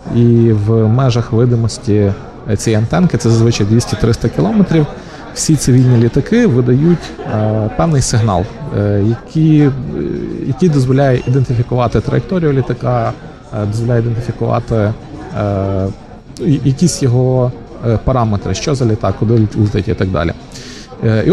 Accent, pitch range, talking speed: native, 110-135 Hz, 120 wpm